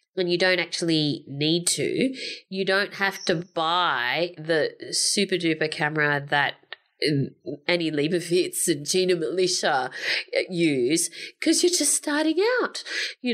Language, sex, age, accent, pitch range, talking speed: English, female, 30-49, Australian, 155-225 Hz, 120 wpm